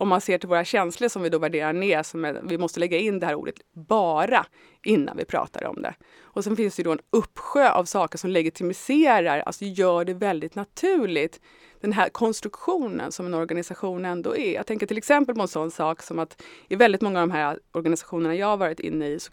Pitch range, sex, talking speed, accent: 170-255 Hz, female, 230 wpm, Swedish